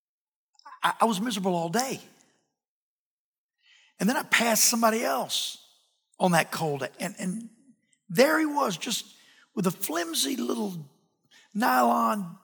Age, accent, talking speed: 50-69, American, 120 wpm